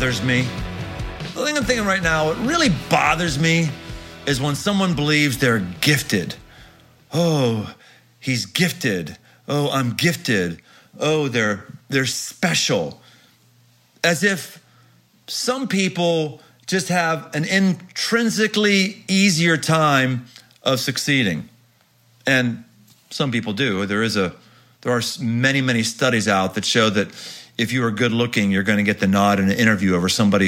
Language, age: English, 40-59